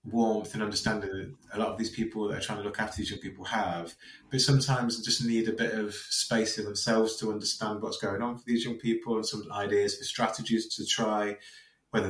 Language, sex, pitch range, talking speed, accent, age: English, male, 100-120 Hz, 230 wpm, British, 30-49